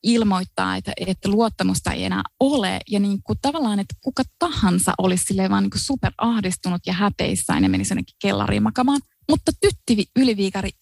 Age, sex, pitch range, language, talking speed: 20-39, female, 195-275 Hz, Finnish, 150 wpm